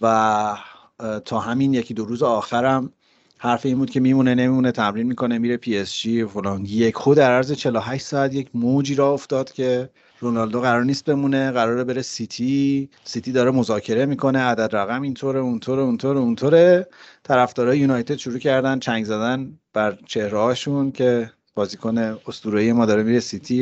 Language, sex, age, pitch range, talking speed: Persian, male, 40-59, 115-135 Hz, 165 wpm